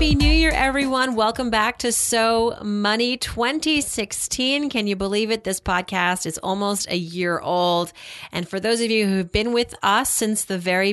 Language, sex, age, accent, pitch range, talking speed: English, female, 30-49, American, 180-230 Hz, 180 wpm